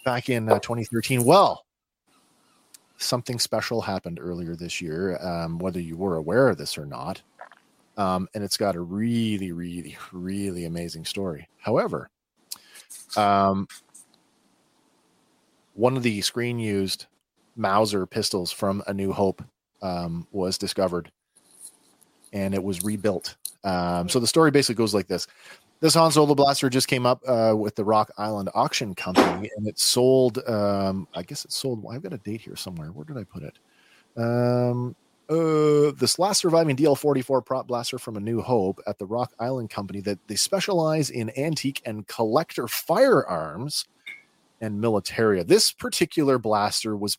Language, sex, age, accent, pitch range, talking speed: English, male, 30-49, American, 95-125 Hz, 155 wpm